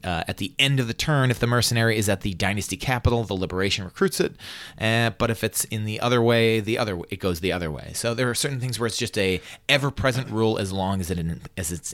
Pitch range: 95-130 Hz